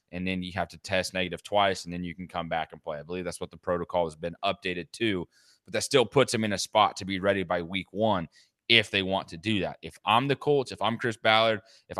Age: 20-39